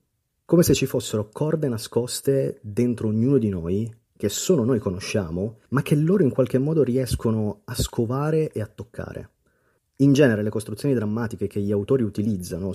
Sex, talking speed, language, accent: male, 165 wpm, Italian, native